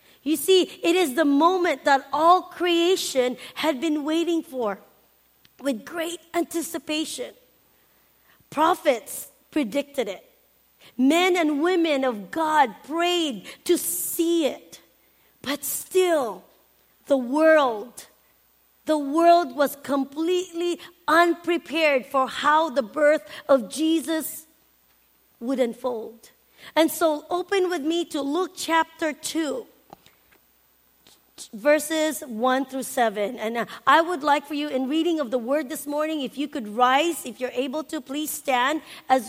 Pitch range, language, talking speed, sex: 260-330 Hz, English, 125 wpm, female